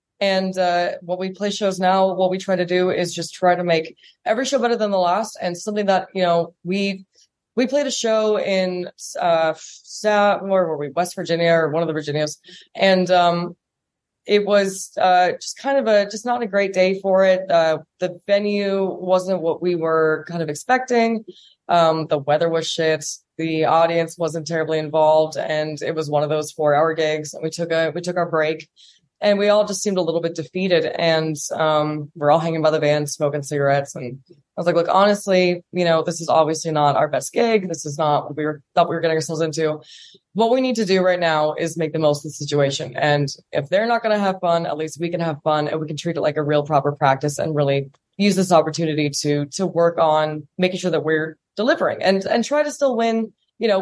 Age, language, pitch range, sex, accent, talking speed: 20-39, English, 155-190 Hz, female, American, 225 wpm